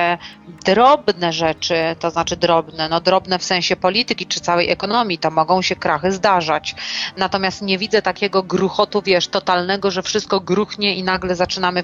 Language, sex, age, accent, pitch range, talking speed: Polish, female, 30-49, native, 175-195 Hz, 155 wpm